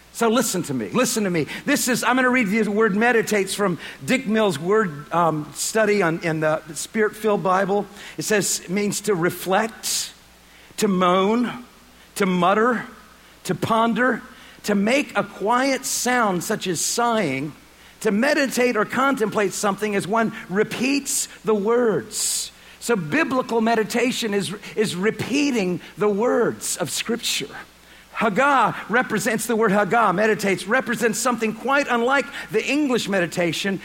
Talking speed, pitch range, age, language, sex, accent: 140 wpm, 195-240 Hz, 50-69, English, male, American